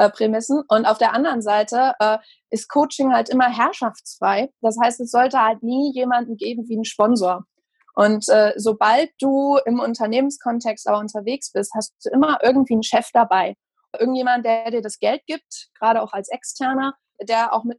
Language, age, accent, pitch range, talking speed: German, 20-39, German, 220-265 Hz, 175 wpm